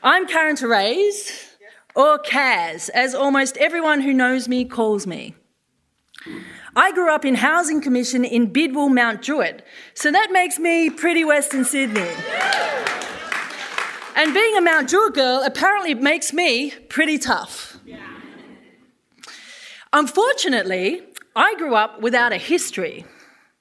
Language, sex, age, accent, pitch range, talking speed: English, female, 30-49, Australian, 230-320 Hz, 120 wpm